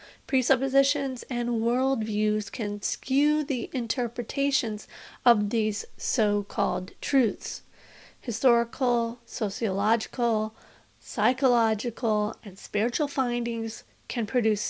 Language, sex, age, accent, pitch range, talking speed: English, female, 30-49, American, 220-260 Hz, 80 wpm